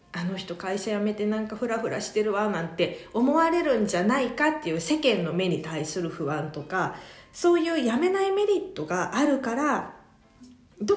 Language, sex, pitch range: Japanese, female, 180-290 Hz